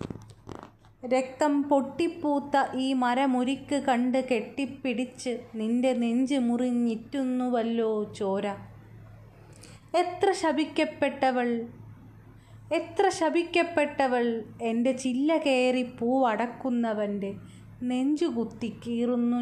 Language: Malayalam